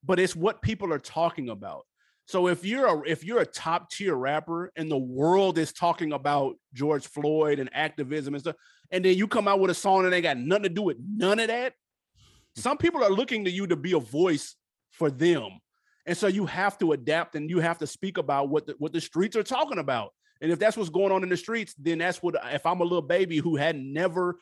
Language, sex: English, male